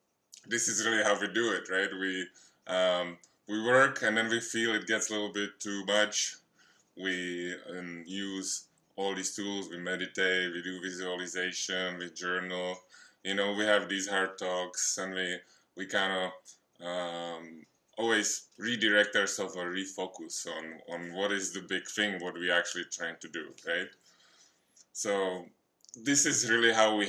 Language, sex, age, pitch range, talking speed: English, male, 20-39, 95-115 Hz, 165 wpm